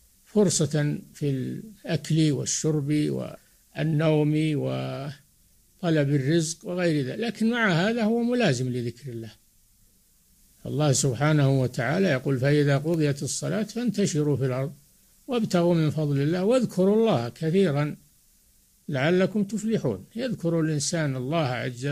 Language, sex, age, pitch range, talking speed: Arabic, male, 60-79, 140-185 Hz, 105 wpm